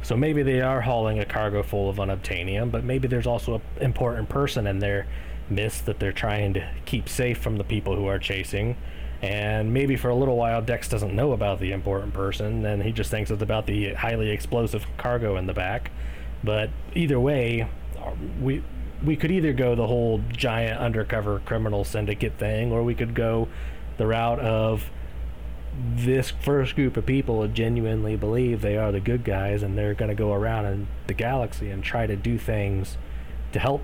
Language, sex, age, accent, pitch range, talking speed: English, male, 30-49, American, 100-120 Hz, 190 wpm